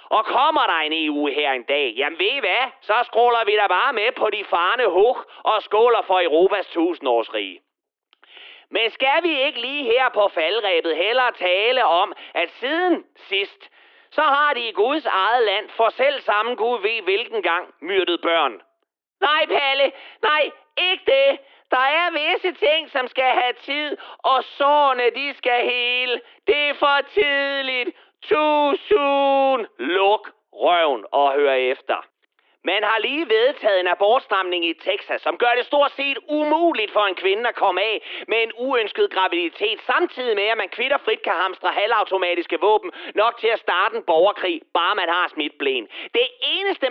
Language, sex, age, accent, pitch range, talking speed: Danish, male, 40-59, native, 230-365 Hz, 170 wpm